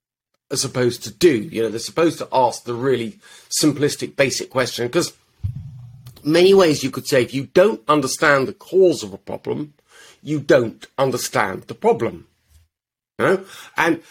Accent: British